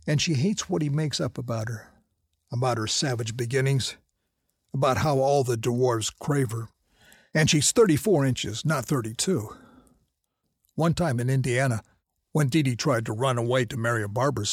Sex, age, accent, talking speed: male, 50-69, American, 170 wpm